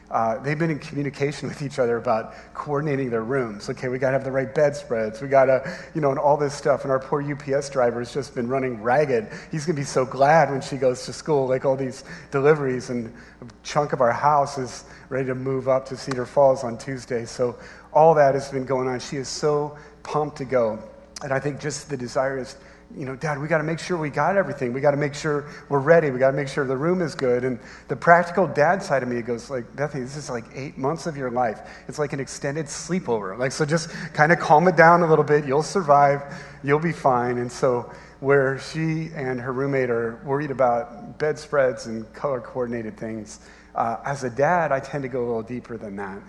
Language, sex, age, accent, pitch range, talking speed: English, male, 40-59, American, 125-150 Hz, 240 wpm